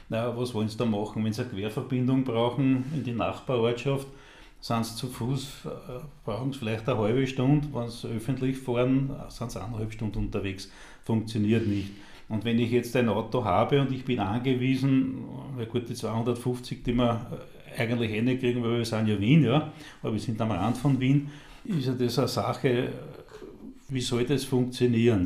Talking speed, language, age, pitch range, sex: 180 wpm, German, 40-59, 115-130 Hz, male